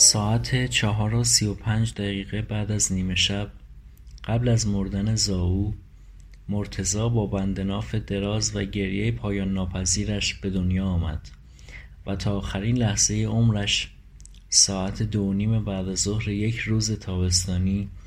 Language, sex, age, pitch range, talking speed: Persian, male, 30-49, 95-110 Hz, 135 wpm